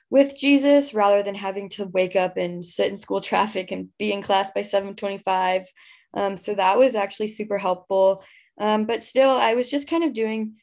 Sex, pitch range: female, 185-230 Hz